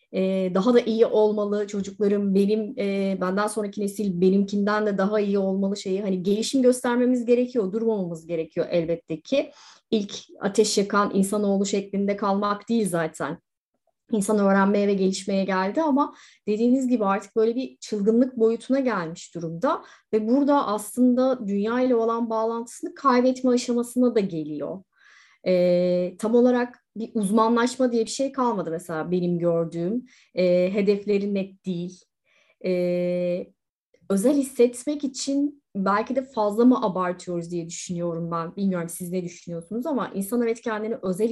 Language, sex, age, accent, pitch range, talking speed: Turkish, female, 30-49, native, 185-230 Hz, 135 wpm